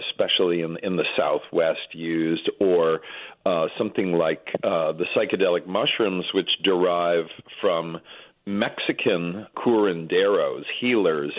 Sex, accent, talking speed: male, American, 105 wpm